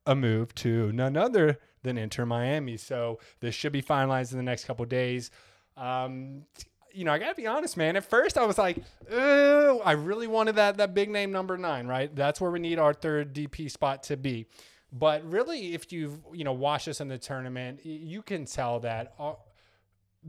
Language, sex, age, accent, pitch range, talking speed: English, male, 20-39, American, 120-150 Hz, 210 wpm